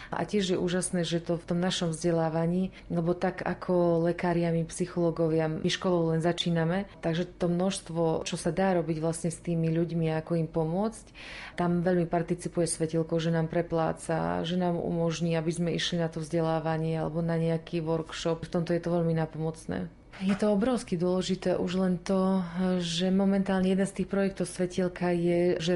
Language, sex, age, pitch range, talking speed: Slovak, female, 30-49, 165-180 Hz, 175 wpm